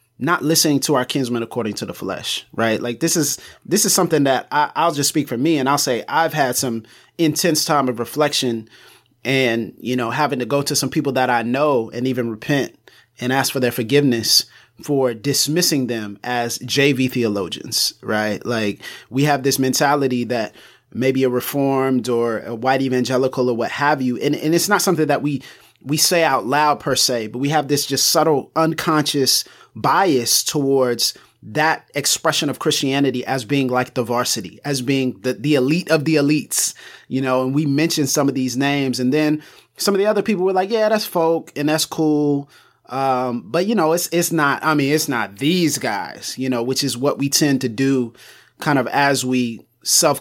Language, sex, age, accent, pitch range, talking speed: English, male, 30-49, American, 125-150 Hz, 200 wpm